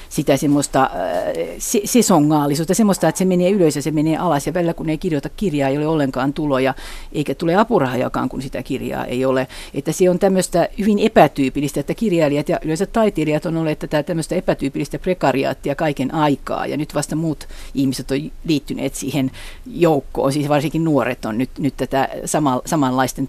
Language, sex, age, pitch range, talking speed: Finnish, female, 50-69, 135-165 Hz, 175 wpm